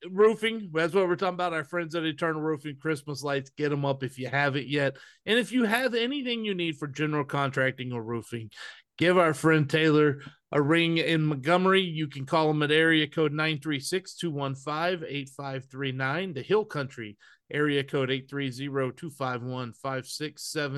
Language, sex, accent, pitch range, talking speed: English, male, American, 140-190 Hz, 155 wpm